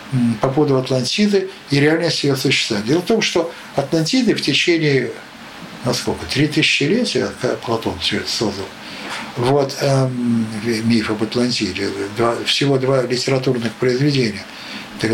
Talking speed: 120 wpm